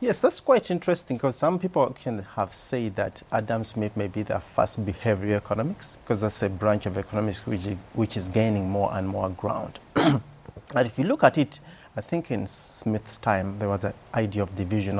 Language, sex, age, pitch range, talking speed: English, male, 30-49, 100-115 Hz, 210 wpm